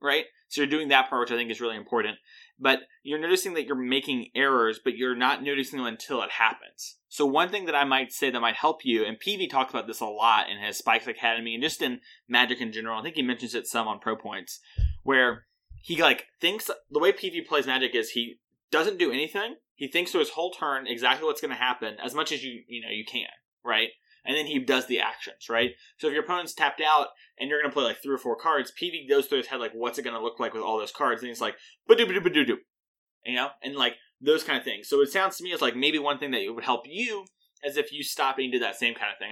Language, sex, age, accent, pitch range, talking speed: English, male, 20-39, American, 125-205 Hz, 270 wpm